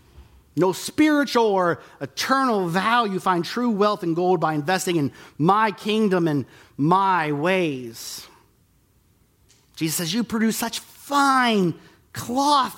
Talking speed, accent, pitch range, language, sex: 115 wpm, American, 135-220 Hz, English, male